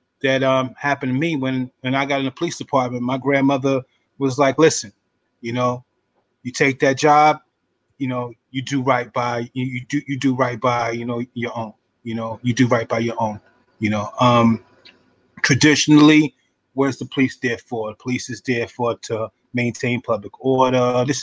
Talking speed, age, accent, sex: 190 wpm, 20-39, American, male